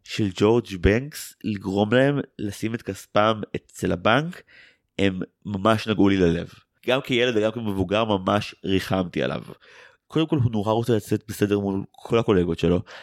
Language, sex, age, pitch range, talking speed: Hebrew, male, 30-49, 95-125 Hz, 150 wpm